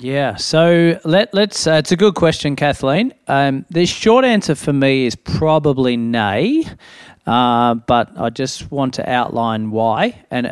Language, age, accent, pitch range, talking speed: English, 40-59, Australian, 115-145 Hz, 160 wpm